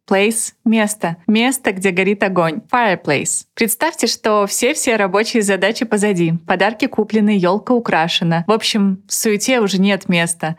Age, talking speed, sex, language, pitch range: 20-39, 140 wpm, female, Russian, 185-225 Hz